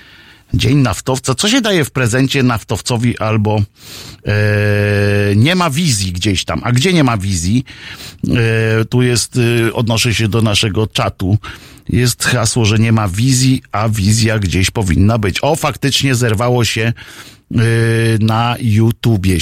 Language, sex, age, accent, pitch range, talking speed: Polish, male, 50-69, native, 110-140 Hz, 135 wpm